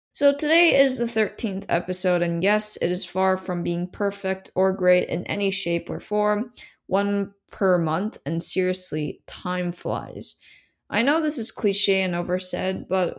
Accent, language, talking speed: American, English, 165 wpm